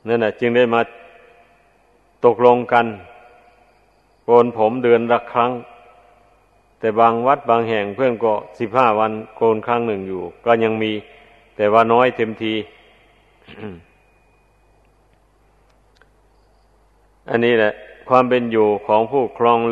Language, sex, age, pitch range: Thai, male, 60-79, 110-120 Hz